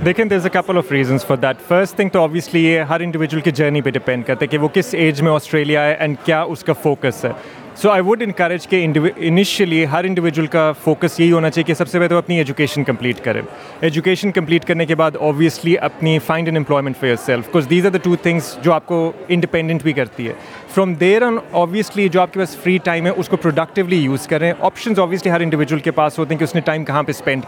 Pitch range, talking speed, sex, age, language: 155-180 Hz, 220 wpm, male, 30-49, Urdu